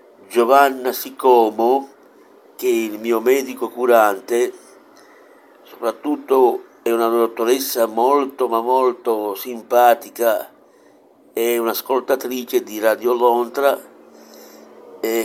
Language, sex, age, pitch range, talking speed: Italian, male, 60-79, 105-125 Hz, 85 wpm